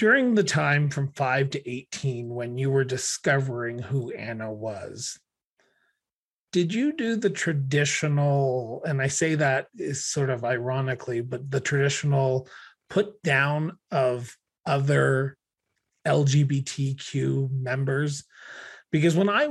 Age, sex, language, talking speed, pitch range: 30-49, male, English, 120 wpm, 130-160 Hz